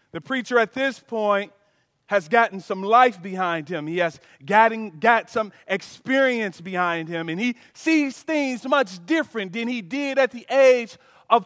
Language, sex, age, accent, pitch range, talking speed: English, male, 30-49, American, 195-260 Hz, 160 wpm